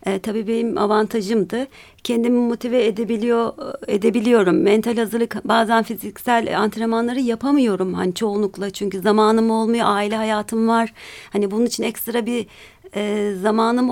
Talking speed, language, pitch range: 125 wpm, Turkish, 195-240 Hz